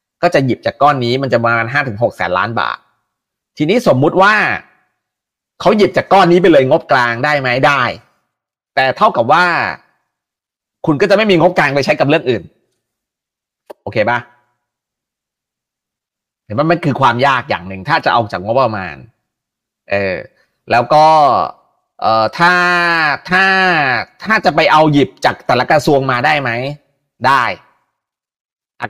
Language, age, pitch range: Thai, 30-49, 125-180 Hz